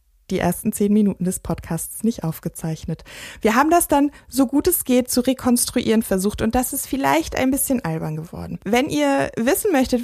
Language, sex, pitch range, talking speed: German, female, 180-225 Hz, 185 wpm